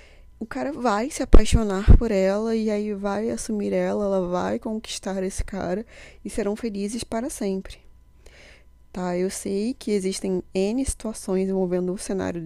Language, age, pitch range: Portuguese, 20-39, 185-225 Hz